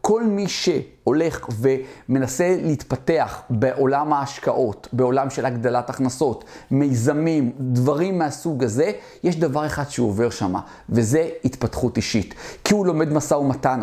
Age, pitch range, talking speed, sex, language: 40-59, 130-155 Hz, 120 wpm, male, Hebrew